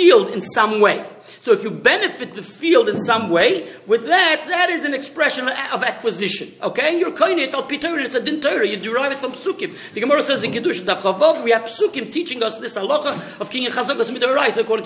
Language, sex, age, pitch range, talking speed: English, male, 50-69, 225-335 Hz, 205 wpm